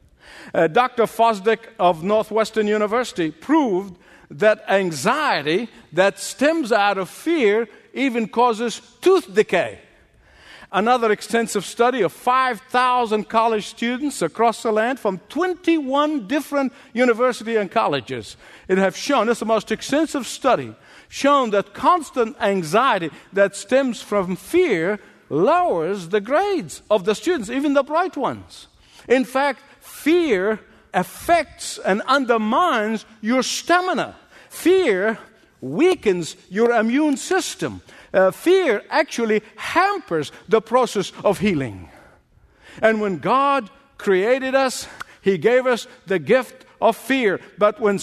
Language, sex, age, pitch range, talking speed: English, male, 50-69, 200-270 Hz, 120 wpm